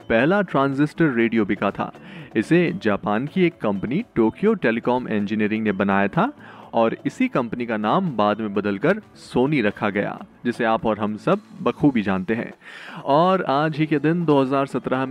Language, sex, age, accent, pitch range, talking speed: Hindi, male, 30-49, native, 115-170 Hz, 165 wpm